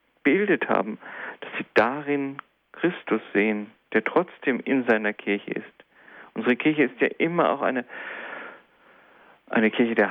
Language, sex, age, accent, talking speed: German, male, 40-59, German, 135 wpm